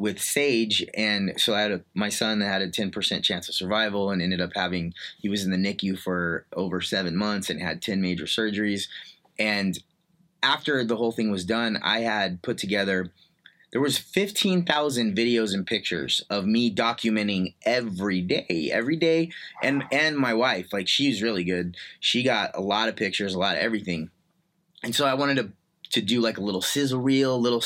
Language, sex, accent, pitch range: English, male, American, 100-130 Hz